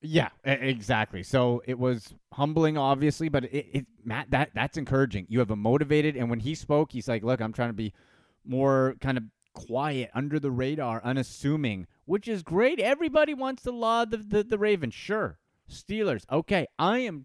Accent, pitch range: American, 120-160 Hz